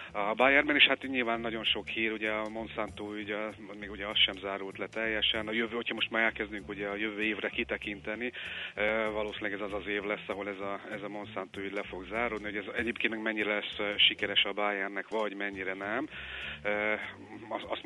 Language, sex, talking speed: Hungarian, male, 195 wpm